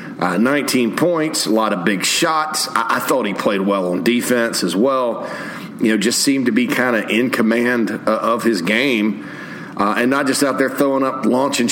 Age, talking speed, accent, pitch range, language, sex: 40-59, 210 wpm, American, 105-135 Hz, English, male